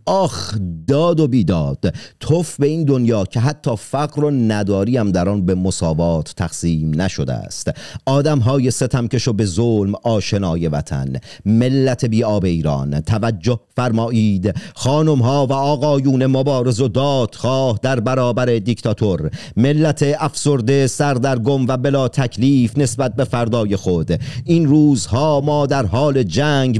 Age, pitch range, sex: 40-59, 120-145 Hz, male